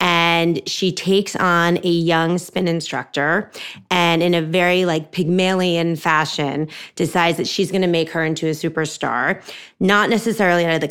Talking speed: 165 wpm